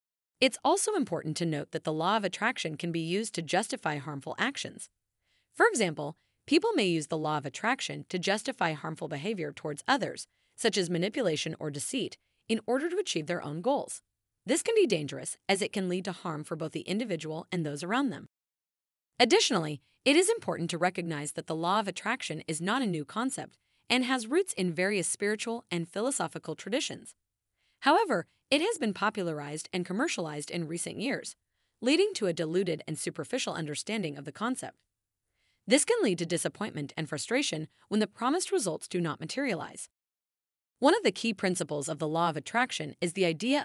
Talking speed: 185 wpm